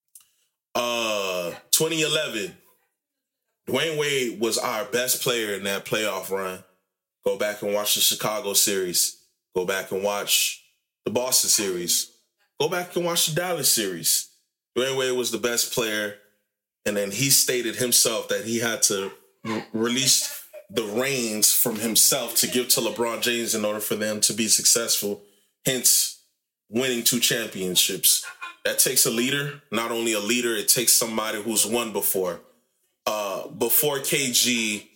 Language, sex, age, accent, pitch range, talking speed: English, male, 20-39, American, 105-140 Hz, 150 wpm